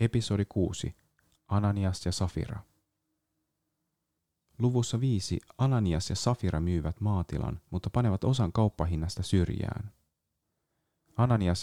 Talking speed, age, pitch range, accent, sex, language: 95 wpm, 30-49, 85-105 Hz, native, male, Finnish